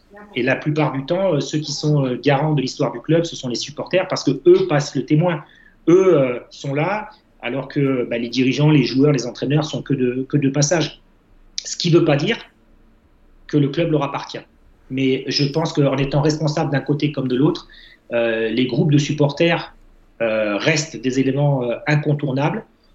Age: 30-49